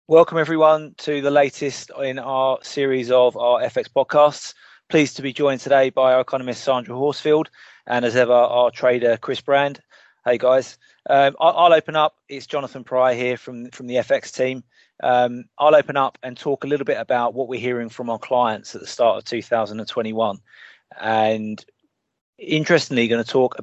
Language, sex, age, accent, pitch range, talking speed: English, male, 20-39, British, 115-135 Hz, 180 wpm